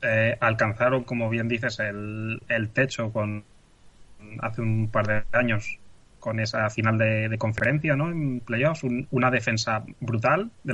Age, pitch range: 20-39, 110-125 Hz